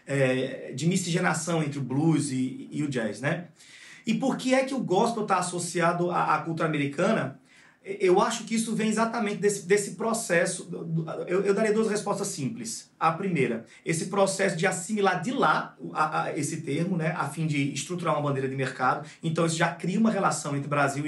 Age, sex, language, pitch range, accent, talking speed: 30-49, male, Portuguese, 150-200 Hz, Brazilian, 180 wpm